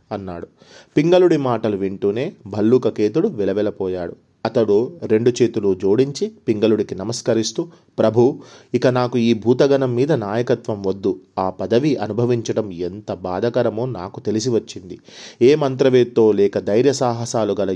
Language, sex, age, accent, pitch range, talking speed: Telugu, male, 30-49, native, 100-130 Hz, 110 wpm